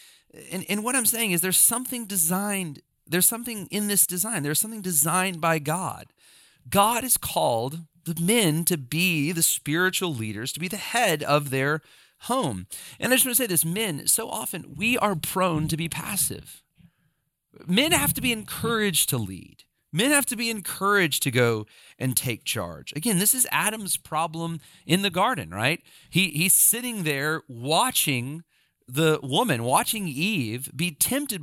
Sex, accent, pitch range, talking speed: male, American, 145-205 Hz, 170 wpm